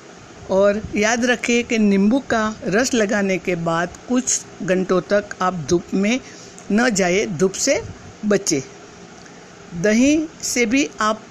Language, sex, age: Hindi, female, 60-79